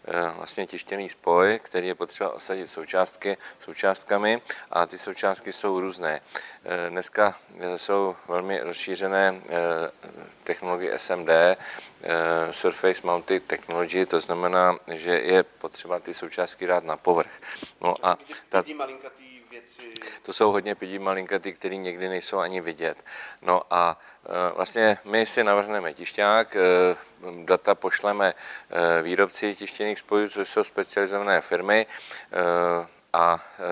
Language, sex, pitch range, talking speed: Czech, male, 85-100 Hz, 110 wpm